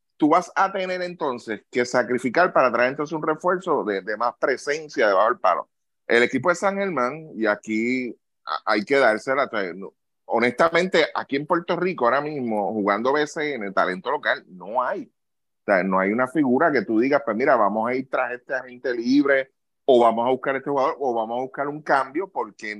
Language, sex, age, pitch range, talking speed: Spanish, male, 30-49, 115-150 Hz, 210 wpm